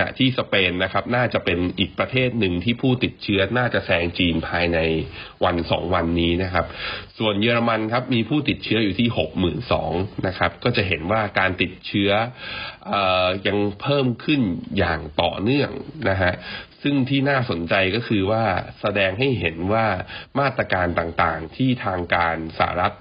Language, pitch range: Thai, 90-115 Hz